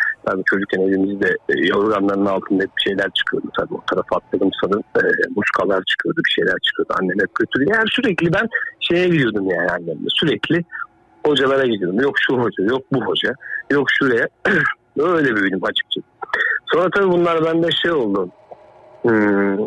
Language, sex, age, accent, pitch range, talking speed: Turkish, male, 60-79, native, 105-160 Hz, 160 wpm